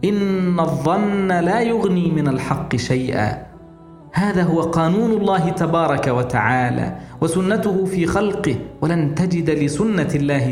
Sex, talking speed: male, 115 wpm